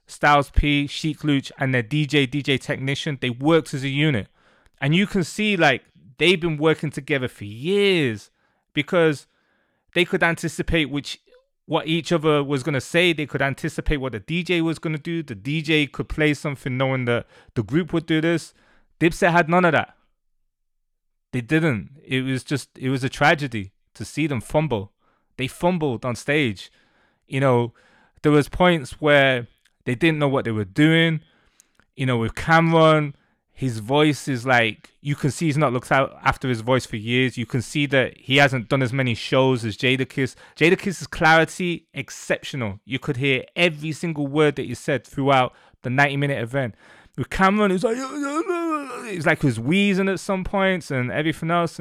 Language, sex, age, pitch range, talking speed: English, male, 20-39, 130-165 Hz, 185 wpm